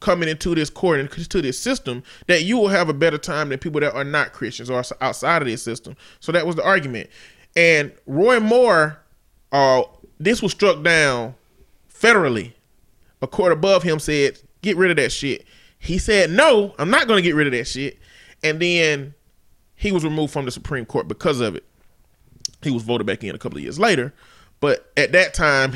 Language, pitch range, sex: English, 135-180 Hz, male